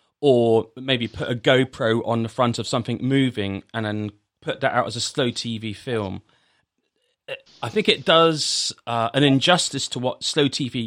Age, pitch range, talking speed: 30-49, 115-150 Hz, 175 wpm